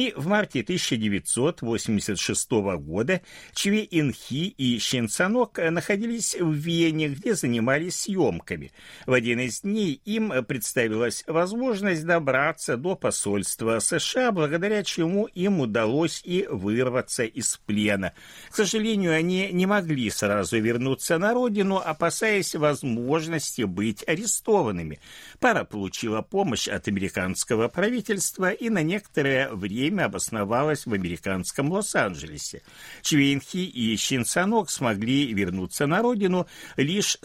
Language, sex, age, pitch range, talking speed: Russian, male, 60-79, 110-185 Hz, 110 wpm